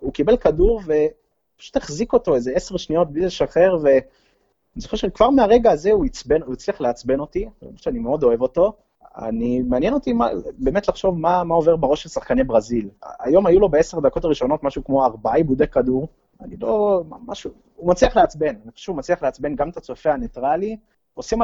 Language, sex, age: Hebrew, male, 20-39